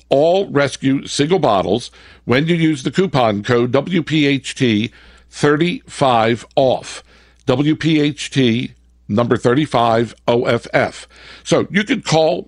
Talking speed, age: 85 wpm, 60-79